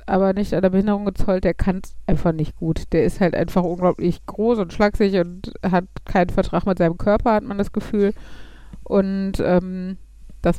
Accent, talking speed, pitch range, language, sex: German, 195 wpm, 185-220 Hz, German, female